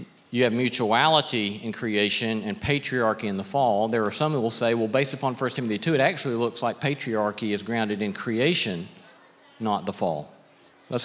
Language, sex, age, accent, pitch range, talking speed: English, male, 40-59, American, 110-130 Hz, 190 wpm